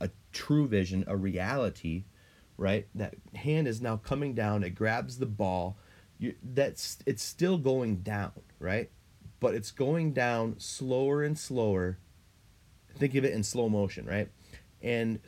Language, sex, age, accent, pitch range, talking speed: English, male, 30-49, American, 95-120 Hz, 145 wpm